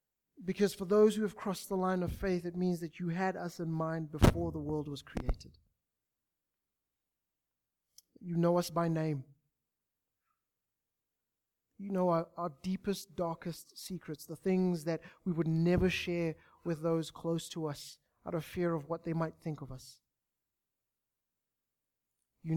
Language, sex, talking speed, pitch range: English, male, 155 wpm, 140-170 Hz